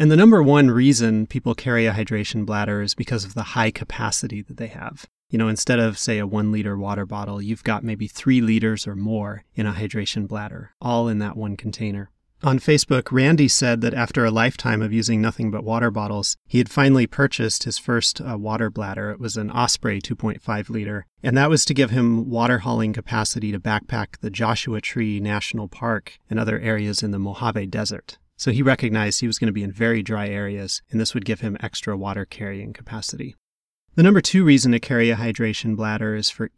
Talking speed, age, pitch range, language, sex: 205 wpm, 30-49, 105-125 Hz, English, male